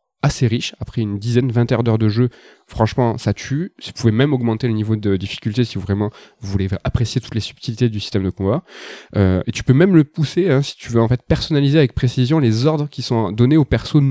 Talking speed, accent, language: 240 wpm, French, French